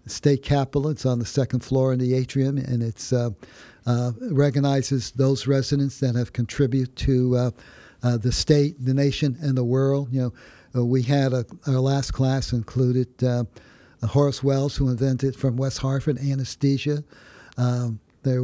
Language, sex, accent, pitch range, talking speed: English, male, American, 120-140 Hz, 165 wpm